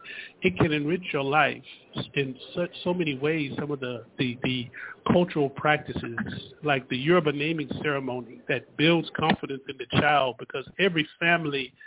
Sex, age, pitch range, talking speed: male, 40-59, 135-165 Hz, 150 wpm